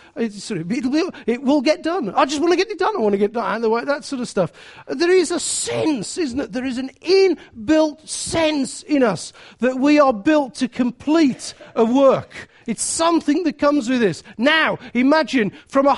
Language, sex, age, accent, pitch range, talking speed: English, male, 40-59, British, 220-315 Hz, 210 wpm